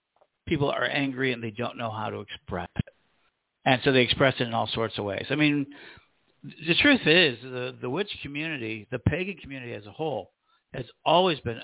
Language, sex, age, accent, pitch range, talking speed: English, male, 50-69, American, 120-155 Hz, 200 wpm